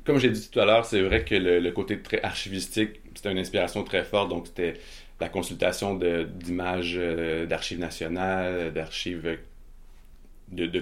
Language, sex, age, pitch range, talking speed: French, male, 30-49, 85-100 Hz, 170 wpm